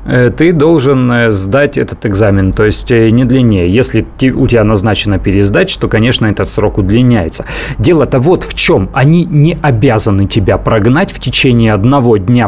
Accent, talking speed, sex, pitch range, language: native, 155 wpm, male, 115-160 Hz, Russian